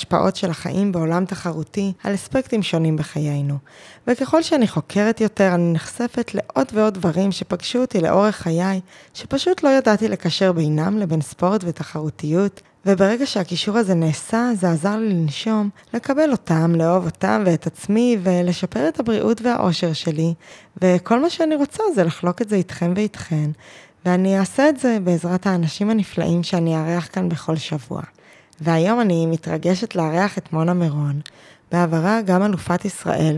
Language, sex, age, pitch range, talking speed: Hebrew, female, 20-39, 165-215 Hz, 145 wpm